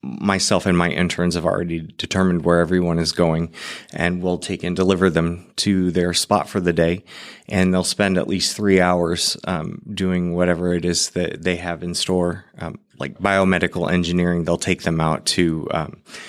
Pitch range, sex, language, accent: 85-95 Hz, male, English, American